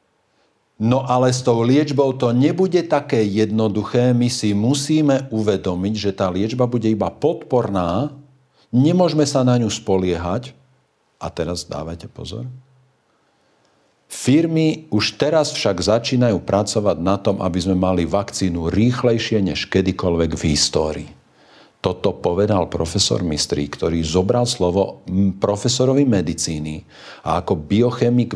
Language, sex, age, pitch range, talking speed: Slovak, male, 50-69, 90-125 Hz, 120 wpm